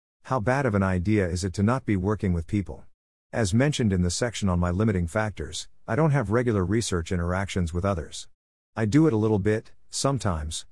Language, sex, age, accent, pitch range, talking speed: English, male, 50-69, American, 90-110 Hz, 205 wpm